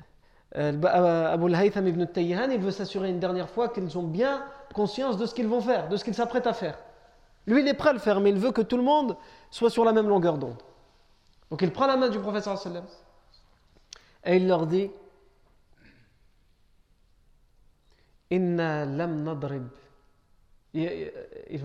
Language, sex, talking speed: French, male, 155 wpm